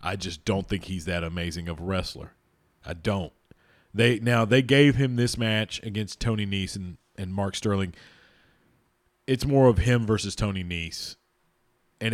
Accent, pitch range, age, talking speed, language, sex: American, 90-120 Hz, 40-59, 170 wpm, English, male